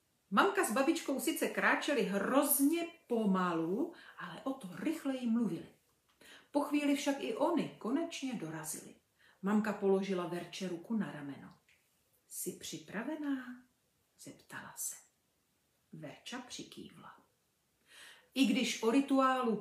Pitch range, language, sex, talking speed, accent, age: 185-255 Hz, Czech, female, 115 wpm, native, 40-59